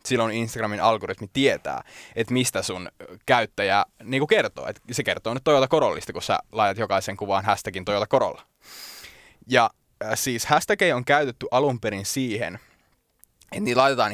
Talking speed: 150 wpm